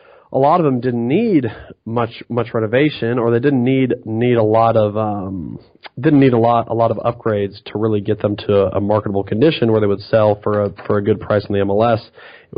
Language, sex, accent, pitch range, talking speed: English, male, American, 100-120 Hz, 230 wpm